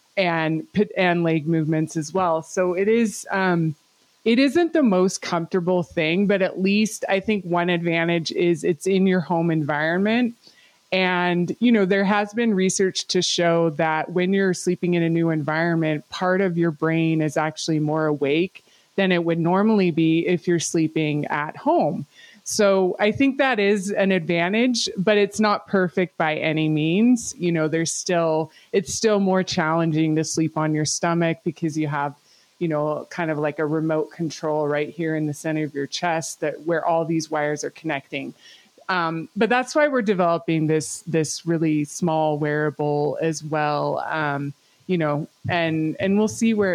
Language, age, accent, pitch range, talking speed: English, 20-39, American, 155-190 Hz, 180 wpm